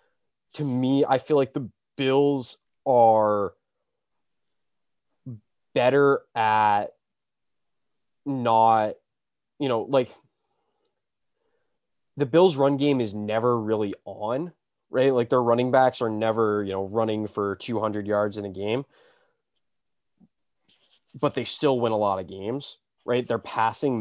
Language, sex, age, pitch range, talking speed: English, male, 20-39, 105-135 Hz, 120 wpm